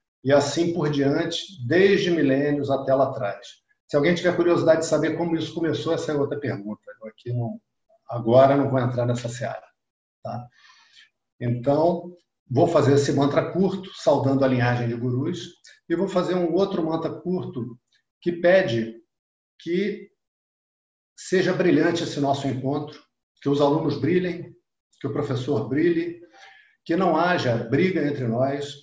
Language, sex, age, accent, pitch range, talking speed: Portuguese, male, 50-69, Brazilian, 125-170 Hz, 150 wpm